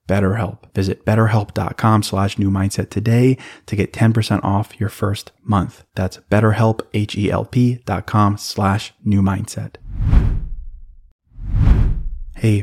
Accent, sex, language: American, male, English